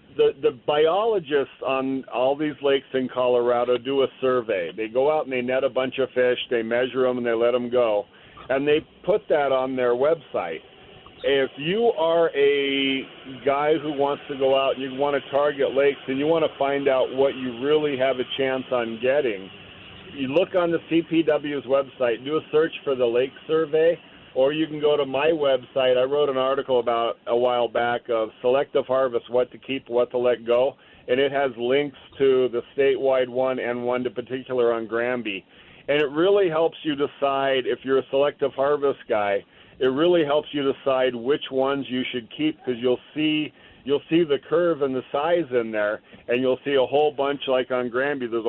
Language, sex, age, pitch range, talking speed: English, male, 50-69, 125-145 Hz, 200 wpm